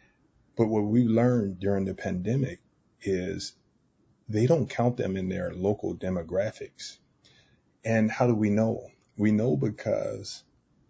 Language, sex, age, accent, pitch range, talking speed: English, male, 30-49, American, 100-120 Hz, 130 wpm